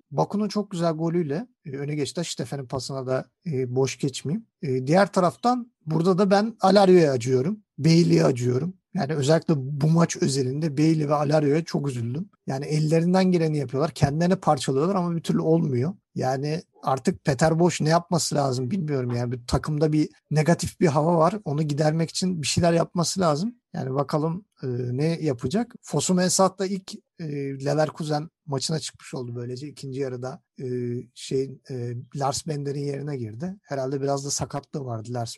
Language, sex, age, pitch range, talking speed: Turkish, male, 50-69, 140-185 Hz, 160 wpm